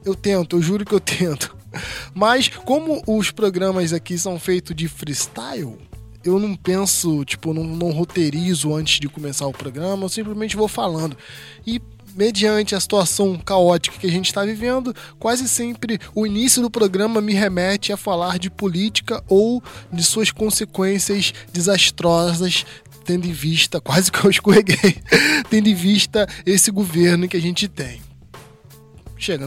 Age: 20-39